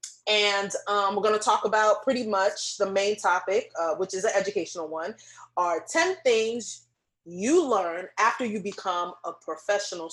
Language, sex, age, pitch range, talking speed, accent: English, female, 20-39, 180-225 Hz, 165 wpm, American